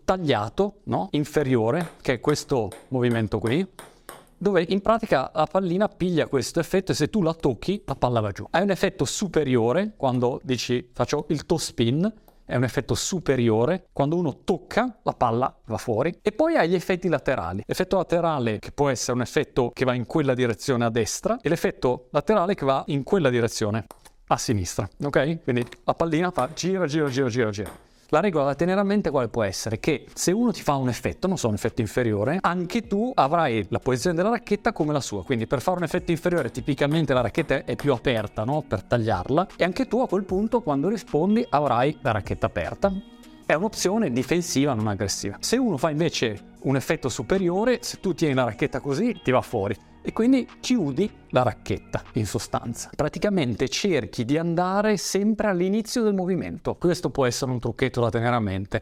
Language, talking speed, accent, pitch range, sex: Italian, 195 wpm, native, 125-185 Hz, male